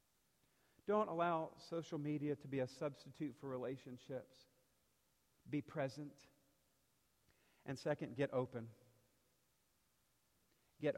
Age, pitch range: 50-69, 130-170 Hz